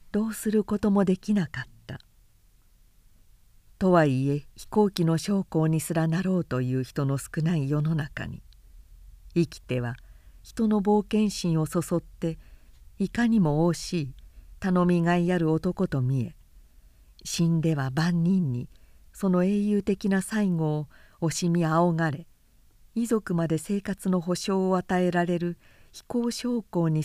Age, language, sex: 50-69, Japanese, female